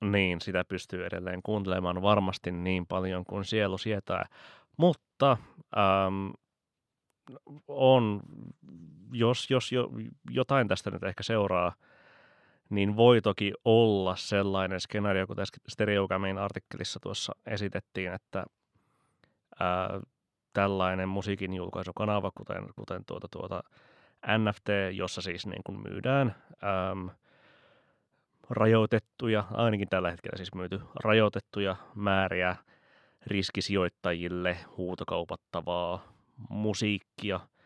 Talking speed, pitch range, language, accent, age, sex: 95 wpm, 90-105 Hz, Finnish, native, 20-39, male